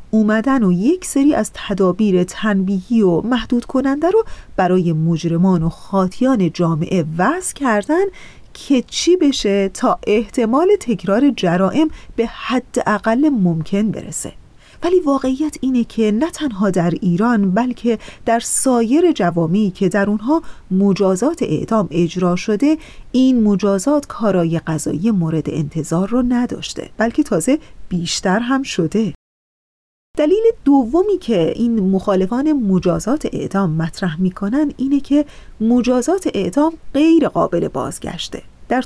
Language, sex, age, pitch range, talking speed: Persian, female, 30-49, 185-275 Hz, 120 wpm